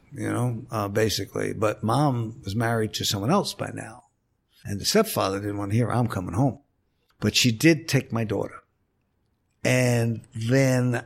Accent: American